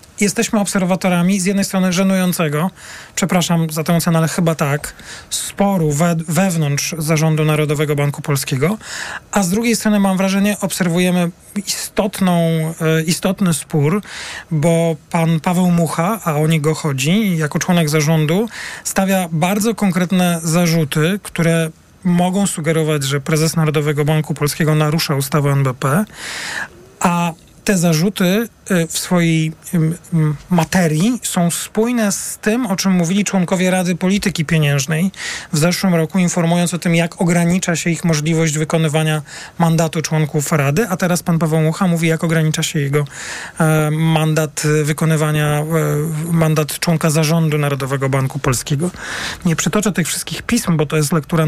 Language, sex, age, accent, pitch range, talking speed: Polish, male, 40-59, native, 155-185 Hz, 135 wpm